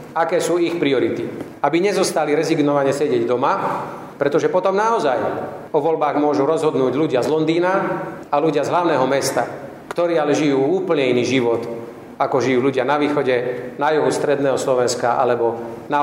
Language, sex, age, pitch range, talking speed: Slovak, male, 40-59, 120-150 Hz, 155 wpm